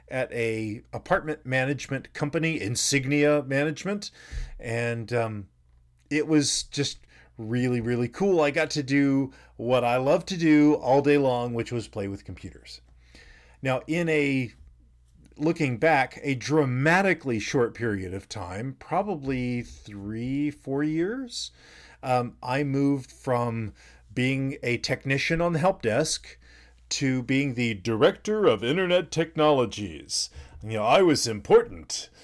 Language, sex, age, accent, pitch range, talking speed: English, male, 40-59, American, 105-145 Hz, 130 wpm